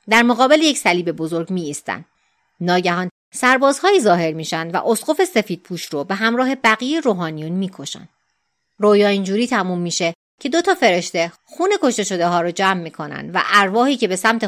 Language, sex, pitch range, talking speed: Persian, female, 165-245 Hz, 175 wpm